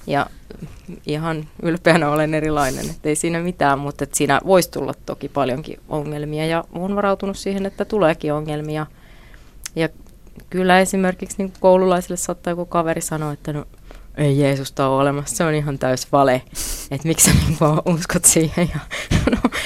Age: 30-49